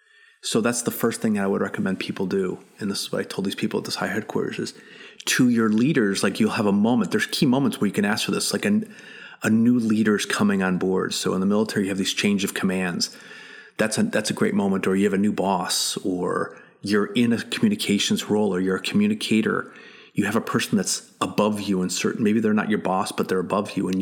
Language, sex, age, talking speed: English, male, 30-49, 245 wpm